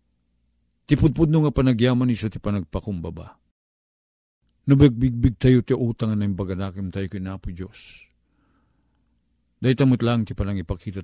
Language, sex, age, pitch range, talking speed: Filipino, male, 50-69, 95-130 Hz, 125 wpm